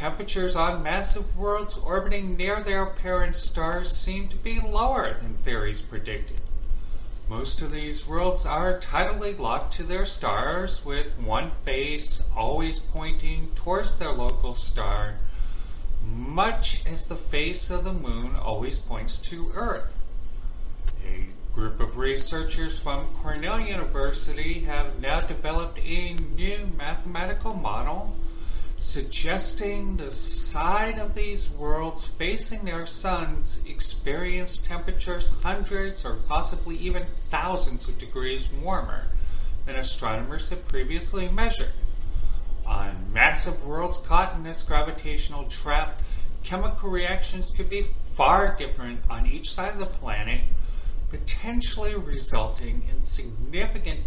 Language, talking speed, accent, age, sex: English, 120 wpm, American, 40-59, male